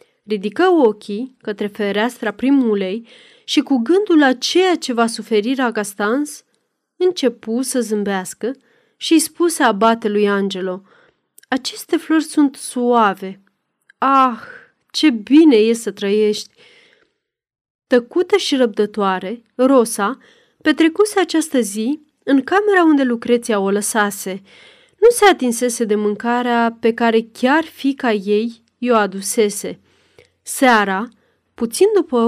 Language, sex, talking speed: Romanian, female, 110 wpm